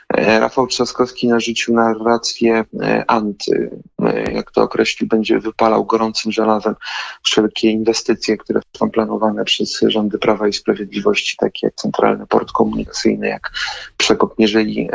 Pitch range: 110-125 Hz